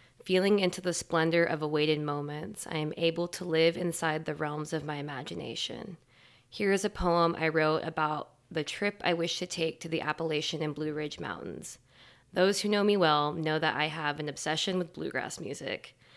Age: 20-39